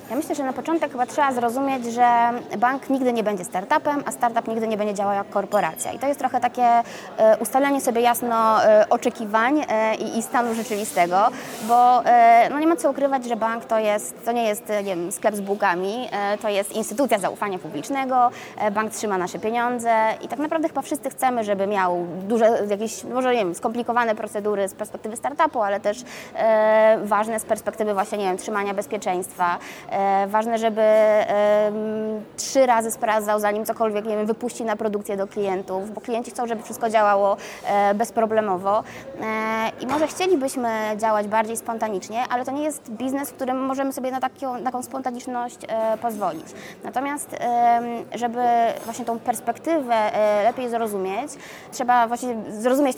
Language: Polish